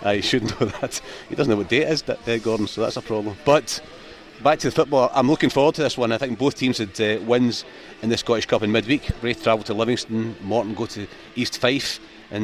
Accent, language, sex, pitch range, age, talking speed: British, English, male, 105-115 Hz, 30-49, 245 wpm